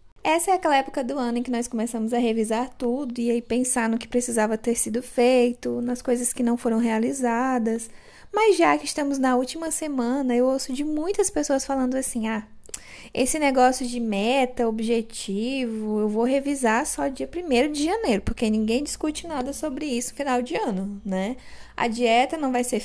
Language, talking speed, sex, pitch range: Portuguese, 190 wpm, female, 235-290 Hz